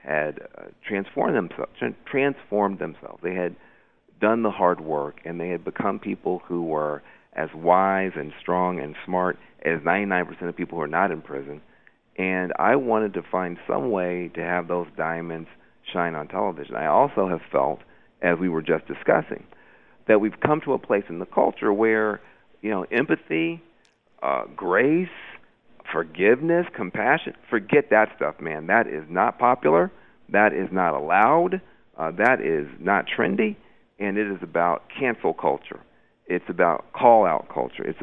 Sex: male